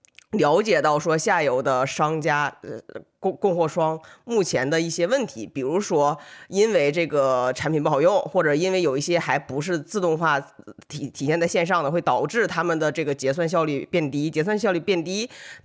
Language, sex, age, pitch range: Chinese, female, 20-39, 145-190 Hz